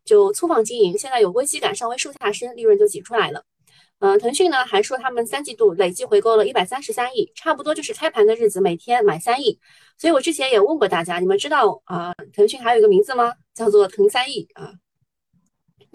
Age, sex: 20-39, female